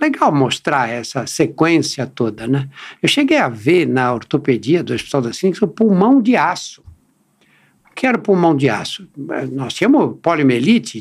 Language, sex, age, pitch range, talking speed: Portuguese, male, 60-79, 145-220 Hz, 170 wpm